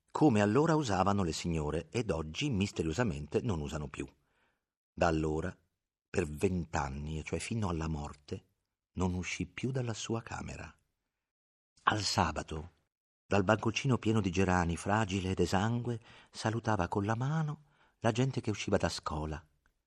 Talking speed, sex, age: 140 wpm, male, 50-69